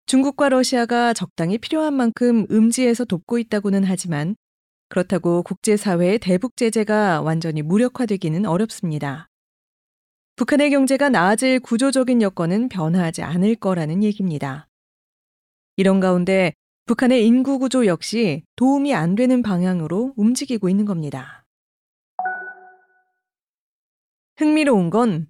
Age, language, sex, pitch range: 30-49, Korean, female, 185-265 Hz